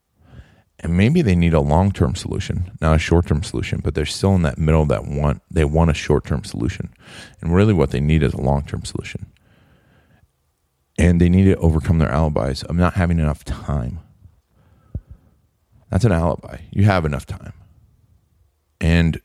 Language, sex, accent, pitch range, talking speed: English, male, American, 80-100 Hz, 180 wpm